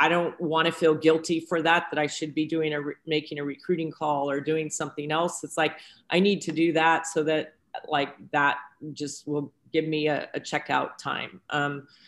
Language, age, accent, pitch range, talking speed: English, 40-59, American, 145-160 Hz, 210 wpm